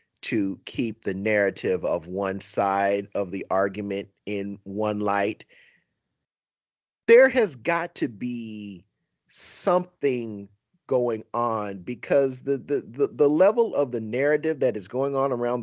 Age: 30-49